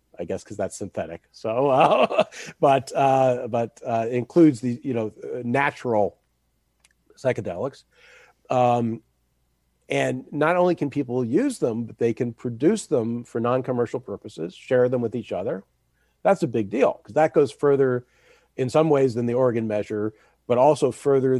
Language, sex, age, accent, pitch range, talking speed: English, male, 40-59, American, 105-130 Hz, 155 wpm